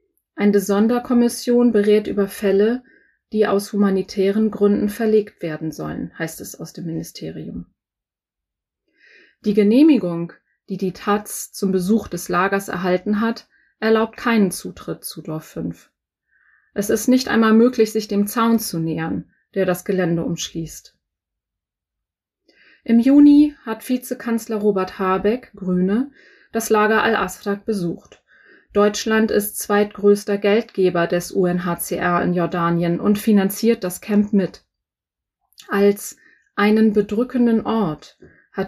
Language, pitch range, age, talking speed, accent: German, 185-225 Hz, 30-49, 120 wpm, German